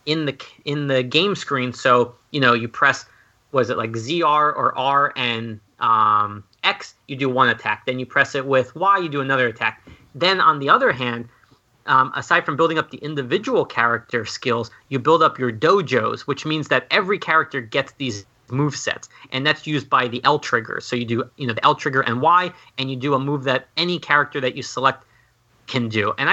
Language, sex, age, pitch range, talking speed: English, male, 30-49, 125-150 Hz, 205 wpm